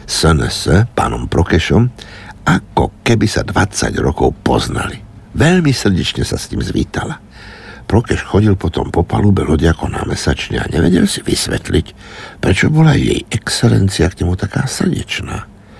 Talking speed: 130 wpm